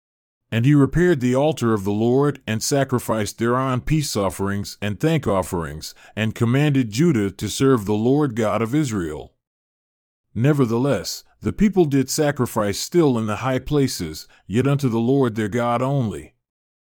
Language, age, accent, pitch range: English, 40-59, American, 105-140 Hz